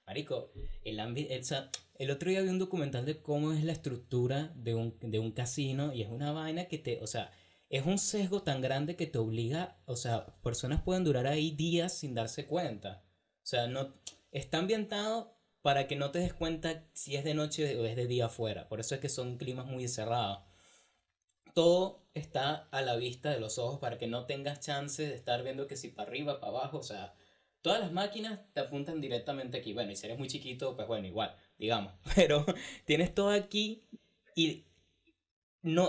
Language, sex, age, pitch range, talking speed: Spanish, male, 20-39, 120-170 Hz, 200 wpm